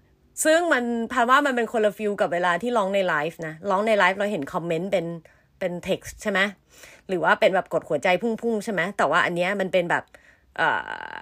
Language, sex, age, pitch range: Thai, female, 30-49, 185-250 Hz